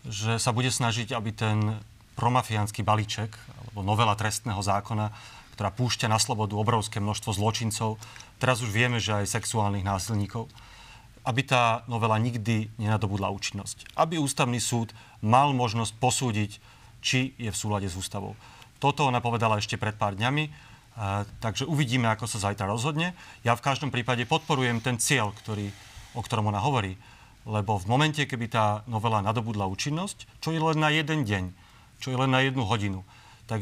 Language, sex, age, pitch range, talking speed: Slovak, male, 40-59, 110-130 Hz, 160 wpm